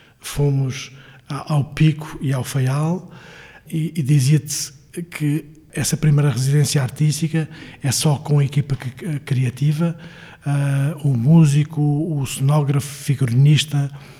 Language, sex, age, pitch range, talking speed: Portuguese, male, 50-69, 135-155 Hz, 125 wpm